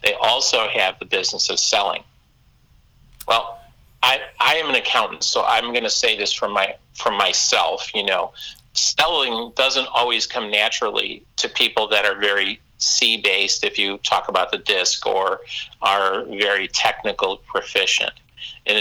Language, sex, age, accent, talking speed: English, male, 50-69, American, 155 wpm